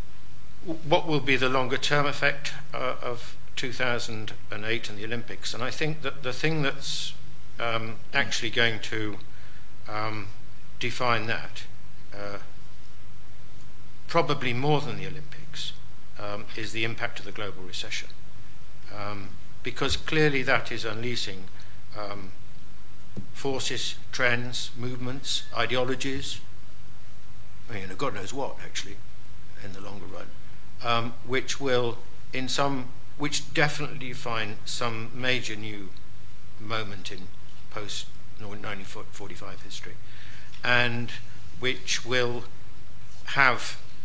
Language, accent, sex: English, British, male